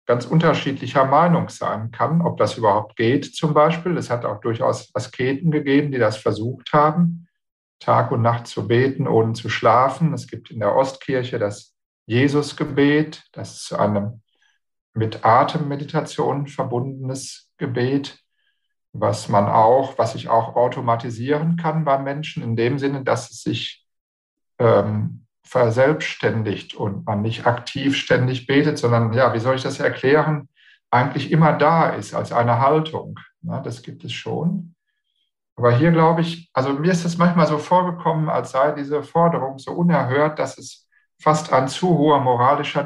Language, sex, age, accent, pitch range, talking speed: German, male, 50-69, German, 120-160 Hz, 155 wpm